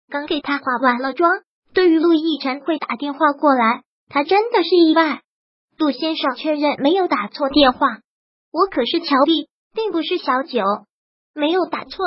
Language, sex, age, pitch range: Chinese, male, 20-39, 275-335 Hz